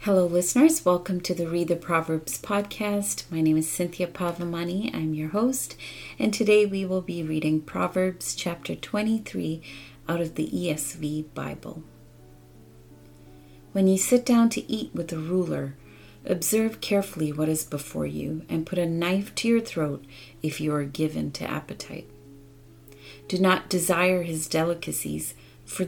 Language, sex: English, female